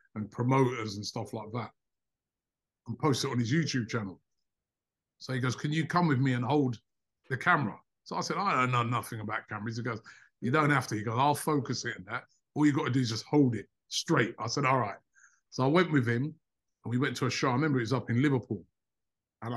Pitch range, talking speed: 115-150 Hz, 245 wpm